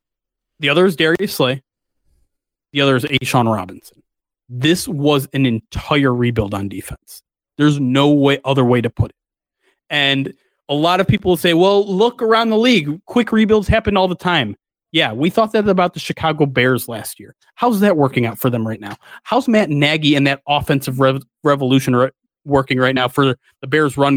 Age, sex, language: 30-49, male, English